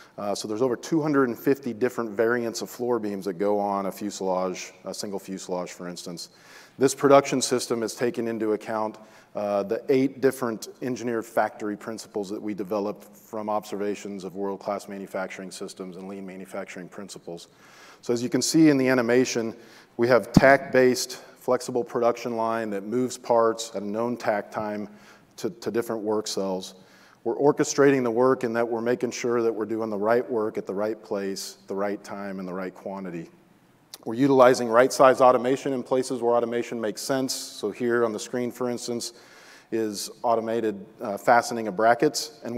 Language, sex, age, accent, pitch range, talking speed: English, male, 40-59, American, 105-125 Hz, 175 wpm